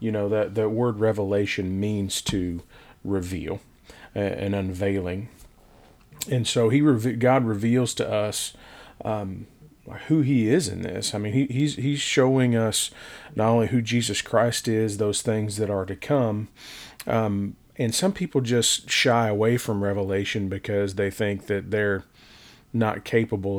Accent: American